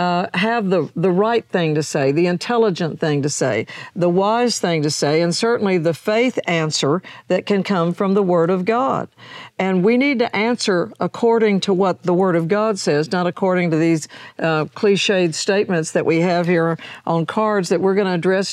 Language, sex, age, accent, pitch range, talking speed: English, female, 50-69, American, 170-205 Hz, 200 wpm